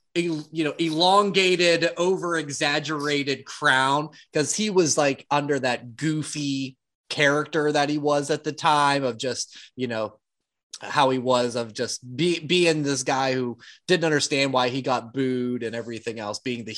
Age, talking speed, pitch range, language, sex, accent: 30-49, 155 wpm, 130-160 Hz, English, male, American